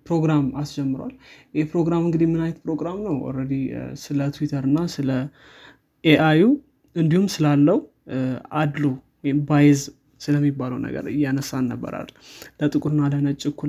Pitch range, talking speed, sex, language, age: 140-160 Hz, 90 wpm, male, Amharic, 20-39